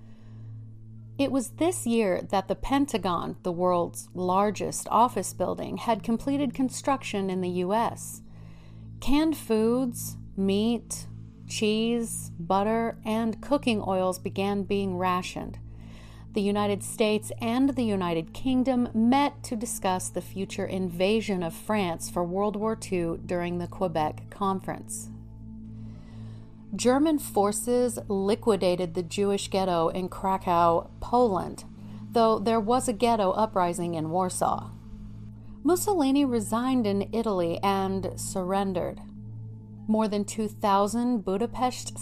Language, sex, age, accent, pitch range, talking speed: English, female, 40-59, American, 155-225 Hz, 115 wpm